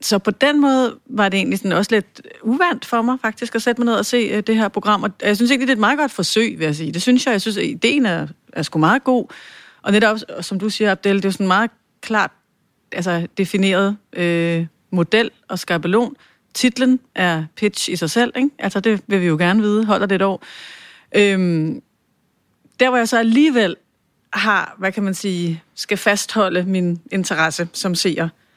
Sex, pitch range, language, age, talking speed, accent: female, 185-230 Hz, English, 40-59, 210 wpm, Danish